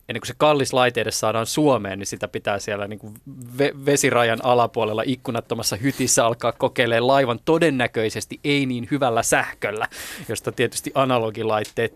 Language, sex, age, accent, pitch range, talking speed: Finnish, male, 20-39, native, 110-135 Hz, 150 wpm